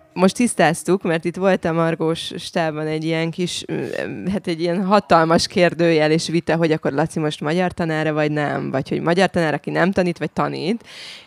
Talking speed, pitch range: 185 wpm, 150-175 Hz